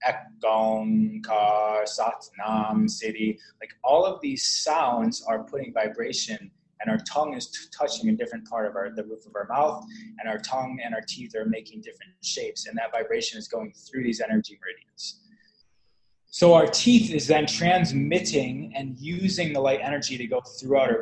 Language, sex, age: English, male, 20-39